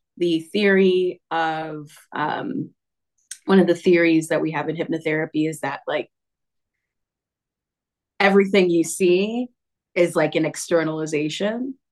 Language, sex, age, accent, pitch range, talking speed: English, female, 30-49, American, 155-185 Hz, 115 wpm